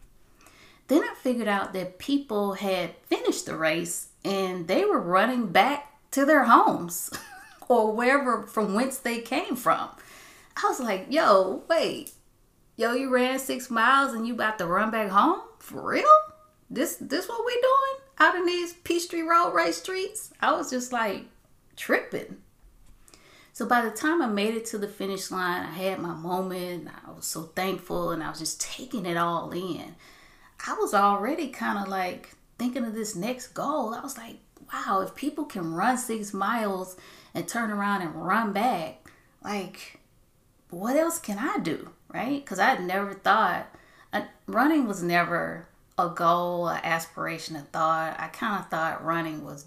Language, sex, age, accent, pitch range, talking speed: English, female, 30-49, American, 180-275 Hz, 175 wpm